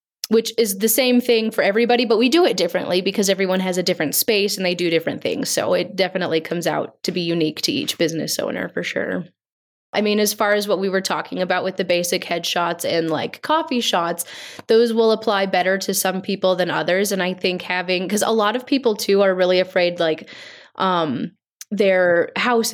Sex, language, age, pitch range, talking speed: female, English, 10-29, 180-215 Hz, 215 wpm